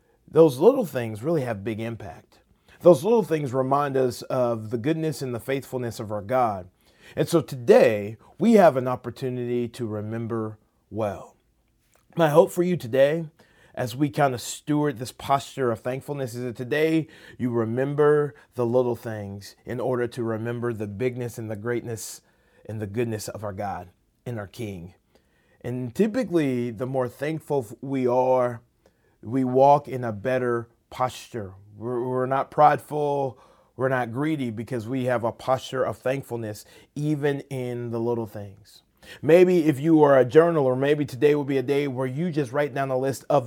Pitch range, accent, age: 115-145 Hz, American, 30-49